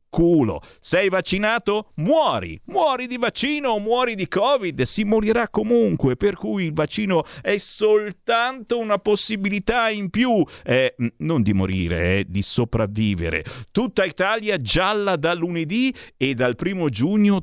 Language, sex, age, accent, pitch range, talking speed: Italian, male, 50-69, native, 120-195 Hz, 140 wpm